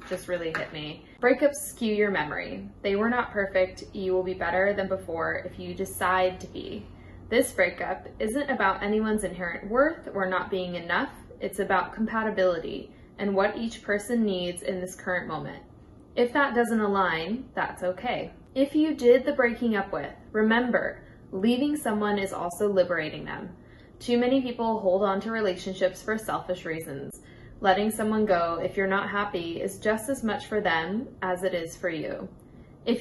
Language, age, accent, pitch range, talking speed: English, 10-29, American, 185-235 Hz, 175 wpm